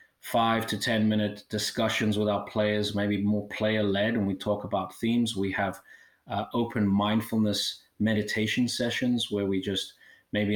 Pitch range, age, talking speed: 100-110 Hz, 30-49, 155 wpm